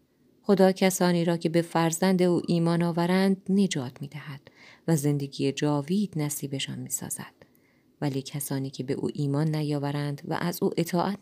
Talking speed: 155 wpm